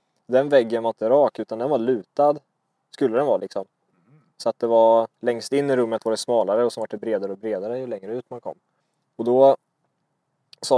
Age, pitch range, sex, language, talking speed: 20-39, 115-135 Hz, male, Swedish, 215 wpm